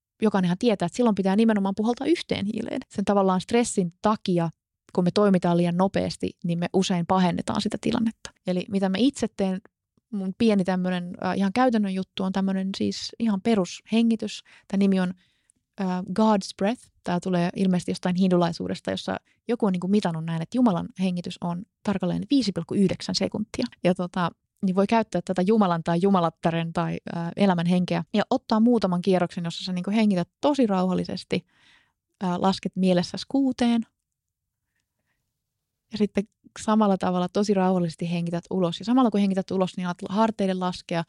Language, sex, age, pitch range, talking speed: Finnish, female, 20-39, 175-210 Hz, 160 wpm